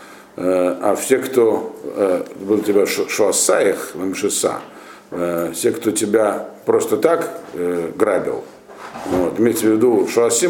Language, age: Russian, 50-69